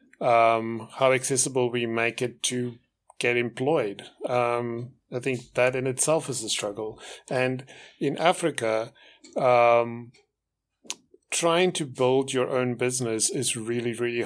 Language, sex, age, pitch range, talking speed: English, male, 30-49, 120-135 Hz, 130 wpm